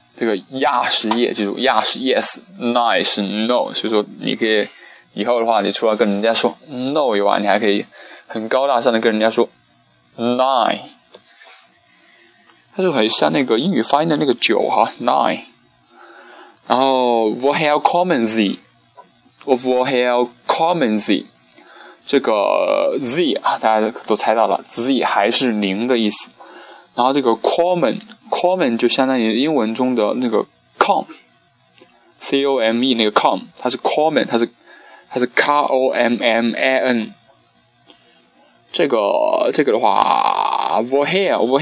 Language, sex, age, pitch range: Chinese, male, 20-39, 110-135 Hz